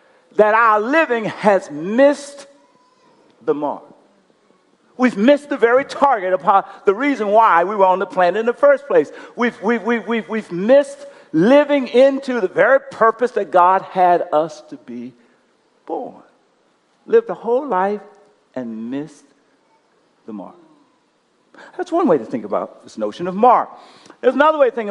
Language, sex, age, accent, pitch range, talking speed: English, male, 50-69, American, 180-235 Hz, 155 wpm